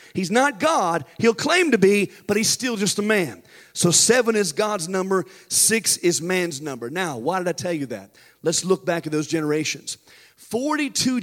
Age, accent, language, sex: 40-59, American, English, male